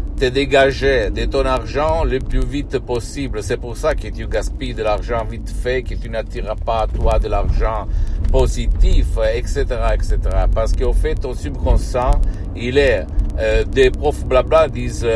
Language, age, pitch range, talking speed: Italian, 60-79, 100-130 Hz, 160 wpm